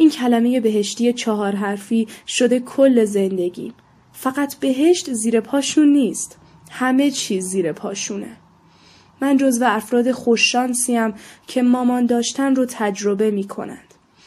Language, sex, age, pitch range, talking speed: Persian, female, 10-29, 200-245 Hz, 115 wpm